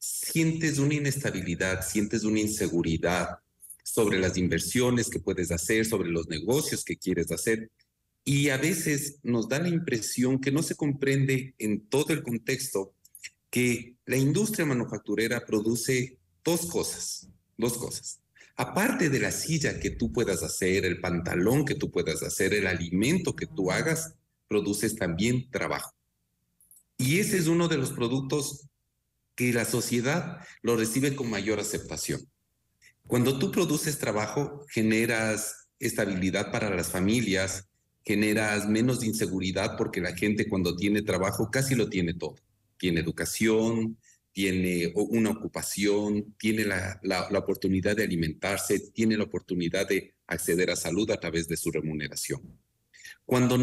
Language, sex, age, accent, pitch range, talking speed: Spanish, male, 40-59, Mexican, 95-130 Hz, 140 wpm